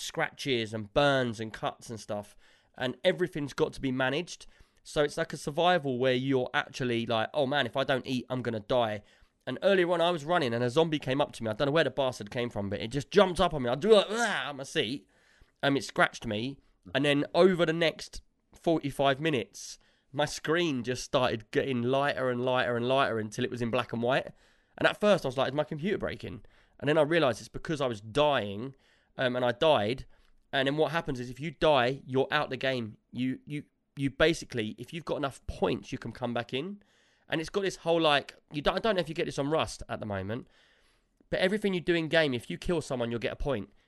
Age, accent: 20-39, British